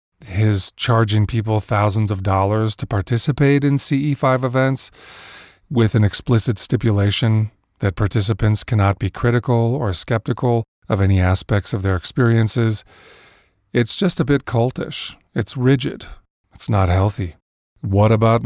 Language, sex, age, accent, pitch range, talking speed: English, male, 30-49, American, 100-125 Hz, 130 wpm